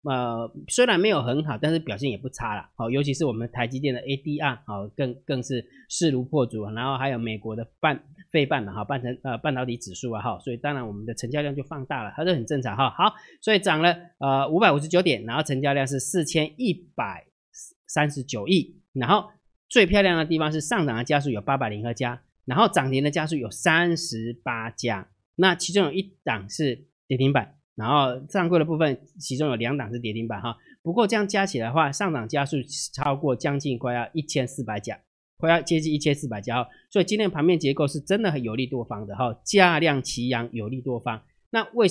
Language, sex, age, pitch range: Chinese, male, 30-49, 120-160 Hz